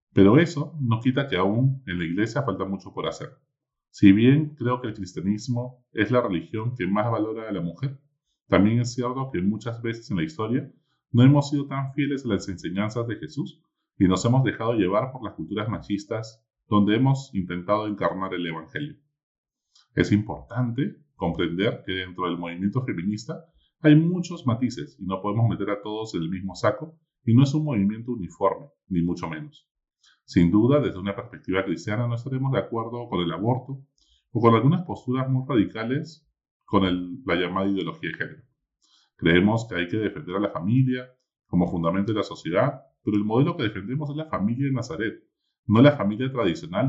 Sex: male